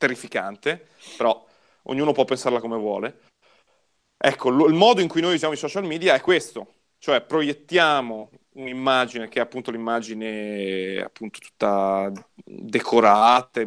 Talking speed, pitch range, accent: 125 wpm, 115-155 Hz, native